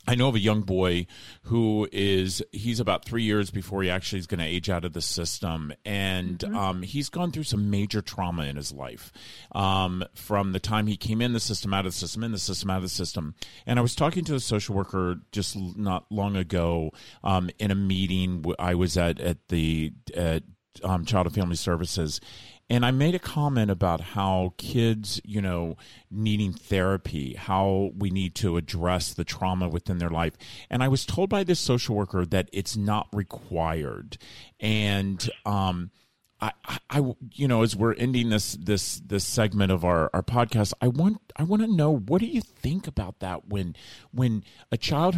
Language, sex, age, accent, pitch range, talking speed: English, male, 40-59, American, 90-115 Hz, 195 wpm